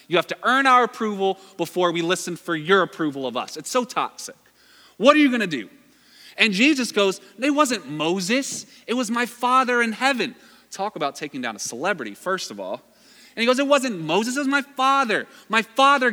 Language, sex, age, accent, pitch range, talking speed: English, male, 30-49, American, 180-245 Hz, 210 wpm